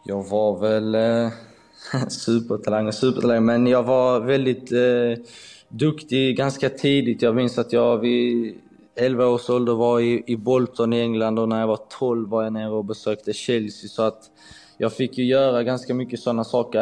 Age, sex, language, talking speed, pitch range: 20-39, male, Swedish, 180 wpm, 110-120 Hz